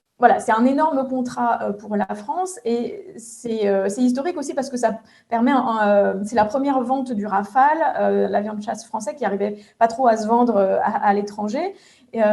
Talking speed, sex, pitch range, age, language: 190 wpm, female, 205-255 Hz, 20-39, French